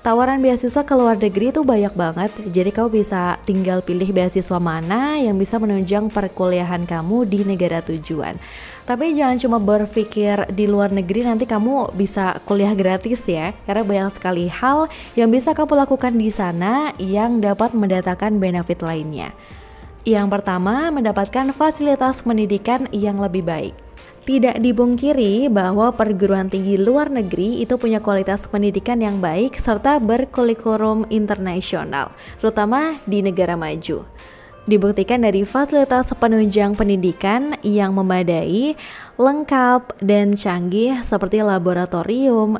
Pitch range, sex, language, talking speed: 190-240 Hz, female, Indonesian, 130 wpm